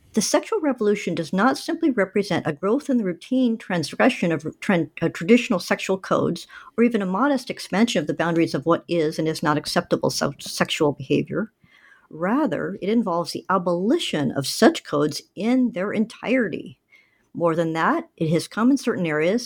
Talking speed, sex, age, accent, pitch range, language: 165 wpm, male, 50-69, American, 170-245 Hz, English